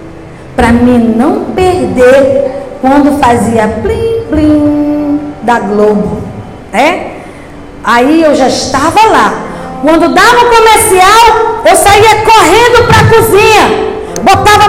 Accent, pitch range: Brazilian, 265-380 Hz